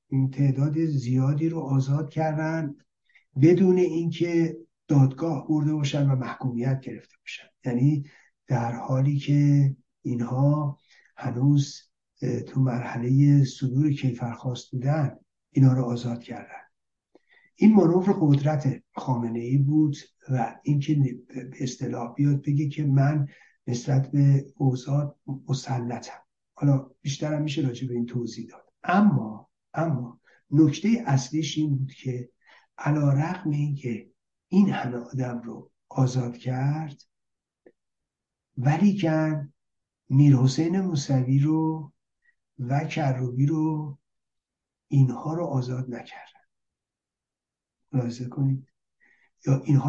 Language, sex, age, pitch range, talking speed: Persian, male, 60-79, 130-155 Hz, 105 wpm